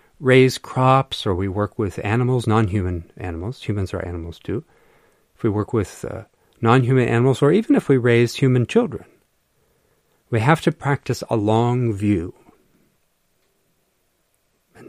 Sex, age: male, 50-69